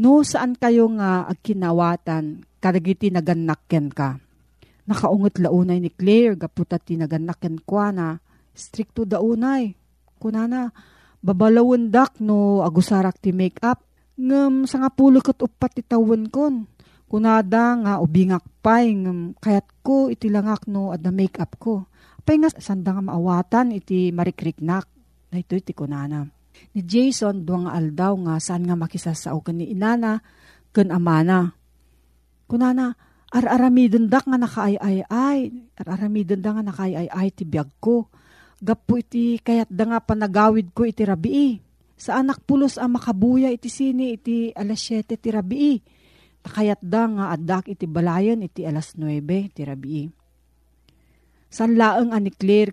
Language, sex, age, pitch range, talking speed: Filipino, female, 40-59, 175-230 Hz, 130 wpm